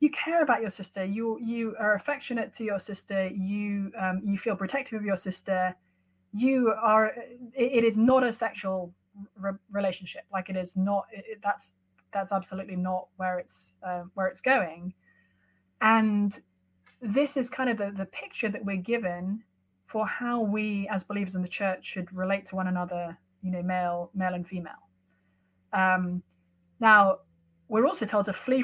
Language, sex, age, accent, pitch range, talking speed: English, female, 20-39, British, 175-210 Hz, 170 wpm